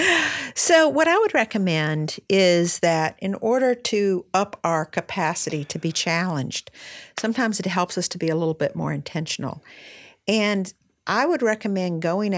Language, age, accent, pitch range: English, 50-69, American, 165-215 Hz